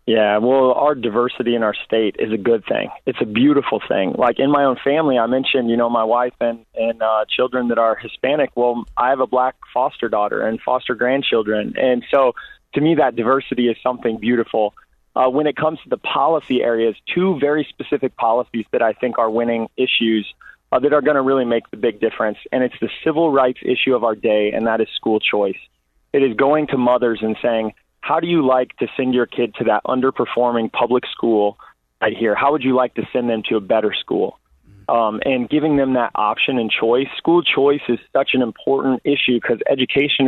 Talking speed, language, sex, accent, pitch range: 215 wpm, English, male, American, 115-135 Hz